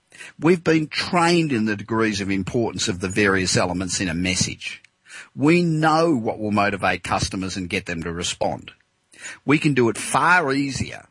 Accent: Australian